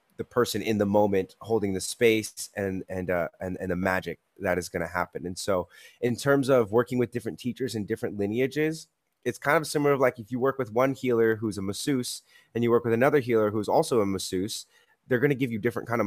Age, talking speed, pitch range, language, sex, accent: 20-39, 245 wpm, 100-125 Hz, English, male, American